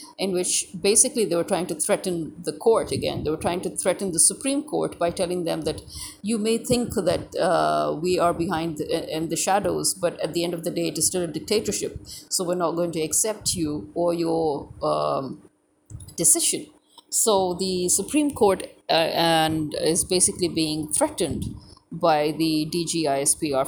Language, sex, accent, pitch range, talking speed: English, female, Indian, 160-190 Hz, 180 wpm